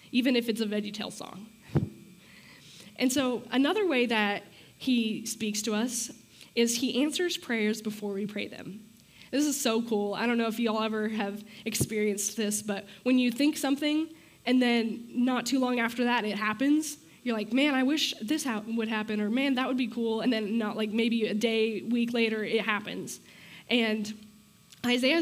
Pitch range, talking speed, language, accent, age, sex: 210-250 Hz, 190 wpm, English, American, 10-29, female